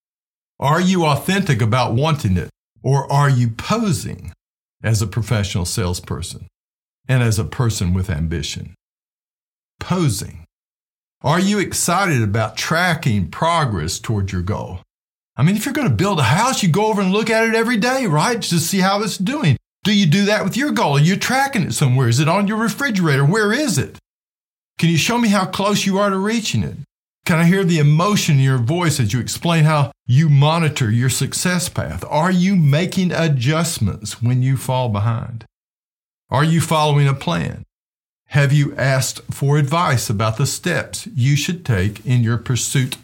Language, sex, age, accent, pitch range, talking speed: English, male, 50-69, American, 115-175 Hz, 180 wpm